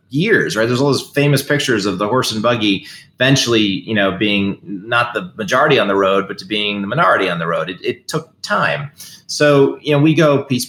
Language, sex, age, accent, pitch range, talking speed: English, male, 30-49, American, 100-125 Hz, 225 wpm